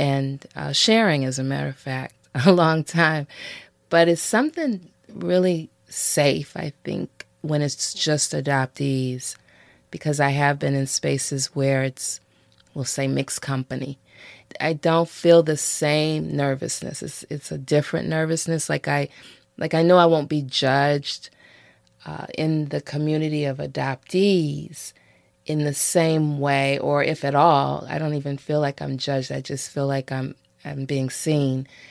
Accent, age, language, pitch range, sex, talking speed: American, 30-49, English, 135-160 Hz, female, 155 wpm